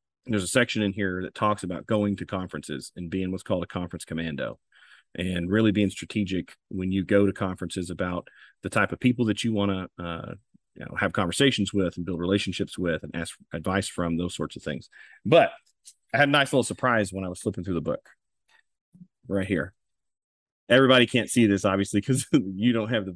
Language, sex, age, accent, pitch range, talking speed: English, male, 30-49, American, 95-120 Hz, 200 wpm